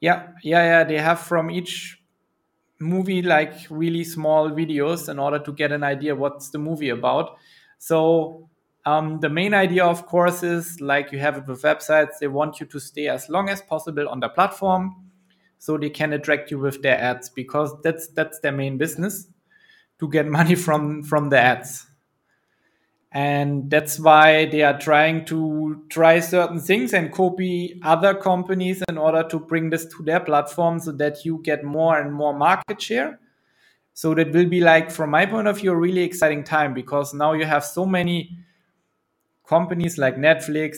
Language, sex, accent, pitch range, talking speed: Romanian, male, German, 150-180 Hz, 180 wpm